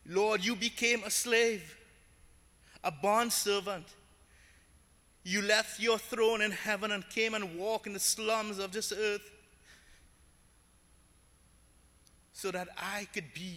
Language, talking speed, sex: English, 130 wpm, male